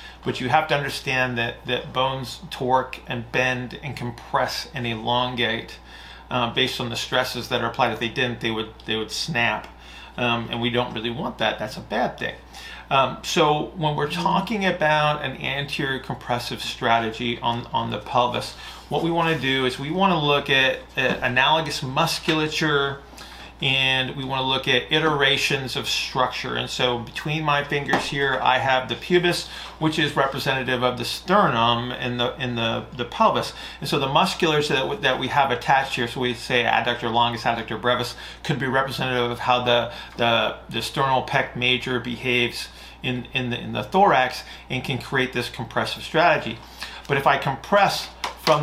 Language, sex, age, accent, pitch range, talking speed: English, male, 30-49, American, 120-150 Hz, 185 wpm